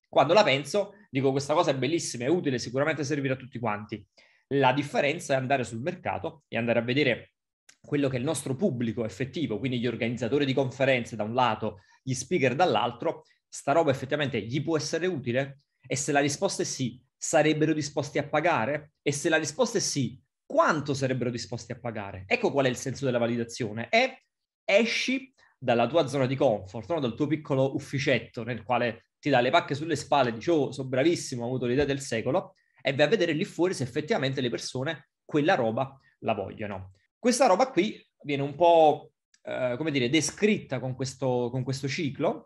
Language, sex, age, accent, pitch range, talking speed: Italian, male, 30-49, native, 120-150 Hz, 190 wpm